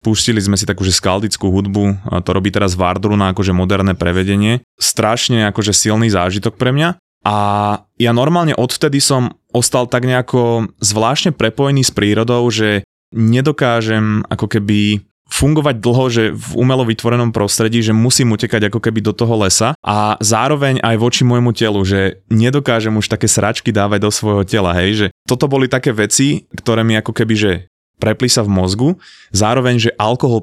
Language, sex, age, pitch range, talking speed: Slovak, male, 20-39, 100-120 Hz, 170 wpm